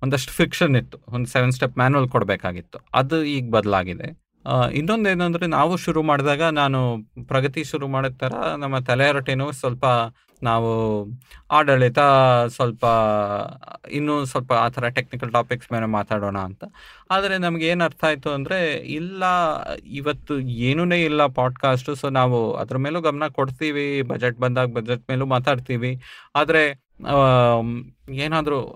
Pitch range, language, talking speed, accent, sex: 120-150 Hz, Kannada, 125 wpm, native, male